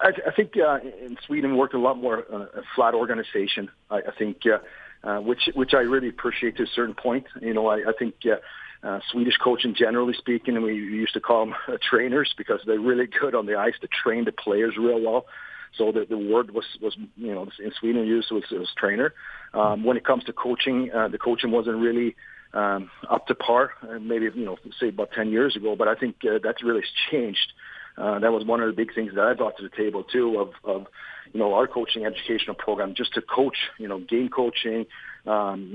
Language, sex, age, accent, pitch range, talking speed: English, male, 40-59, Canadian, 110-125 Hz, 225 wpm